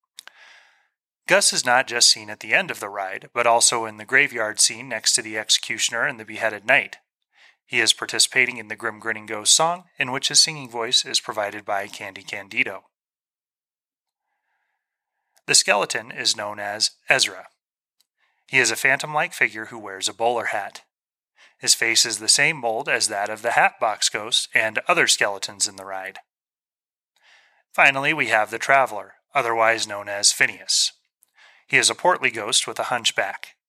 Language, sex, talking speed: English, male, 170 wpm